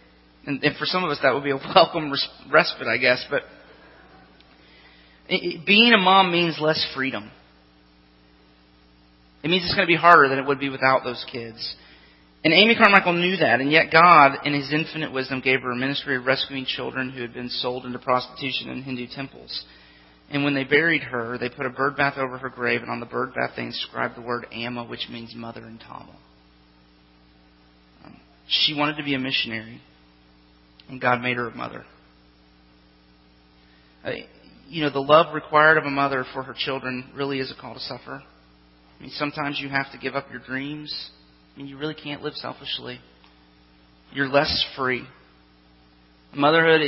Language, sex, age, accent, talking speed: English, male, 30-49, American, 175 wpm